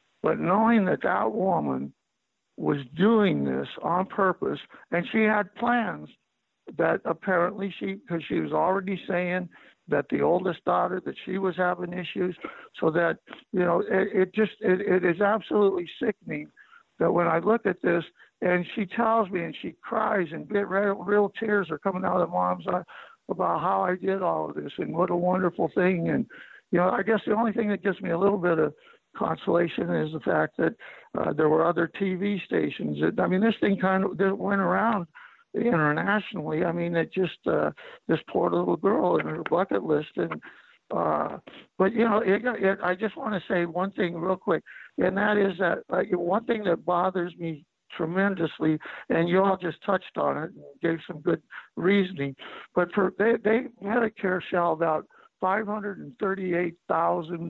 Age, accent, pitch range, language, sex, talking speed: 60-79, American, 175-205 Hz, English, male, 190 wpm